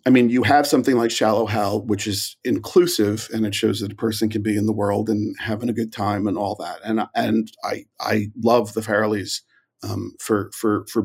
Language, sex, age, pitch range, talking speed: English, male, 40-59, 110-135 Hz, 225 wpm